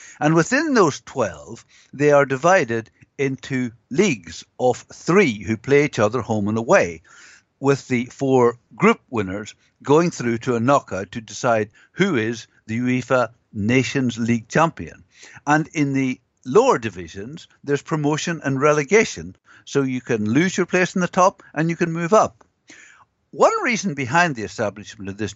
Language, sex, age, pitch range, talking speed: English, male, 60-79, 115-150 Hz, 160 wpm